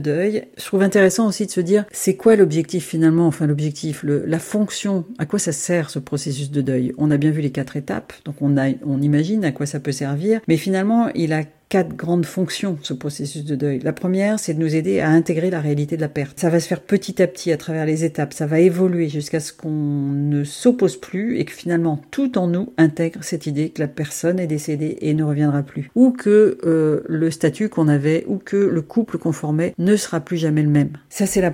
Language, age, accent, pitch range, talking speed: French, 40-59, French, 155-190 Hz, 240 wpm